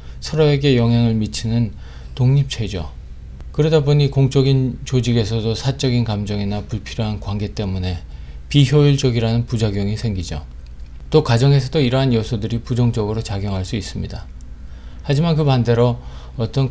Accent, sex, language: native, male, Korean